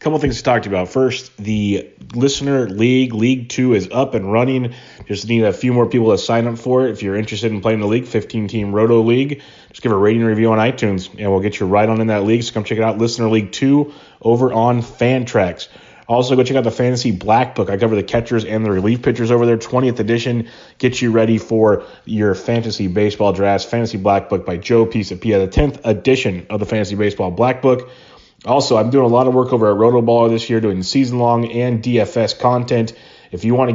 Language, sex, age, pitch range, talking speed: English, male, 30-49, 110-125 Hz, 230 wpm